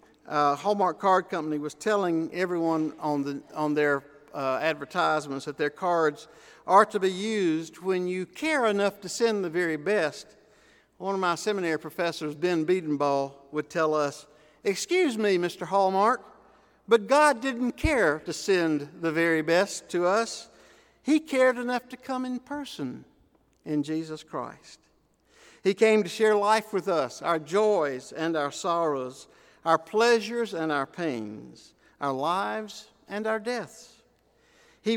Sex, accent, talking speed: male, American, 150 wpm